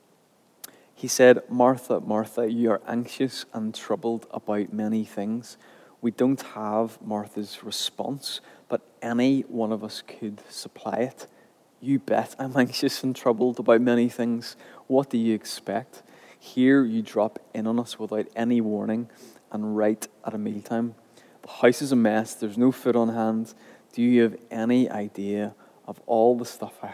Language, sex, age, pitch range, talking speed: English, male, 20-39, 105-120 Hz, 160 wpm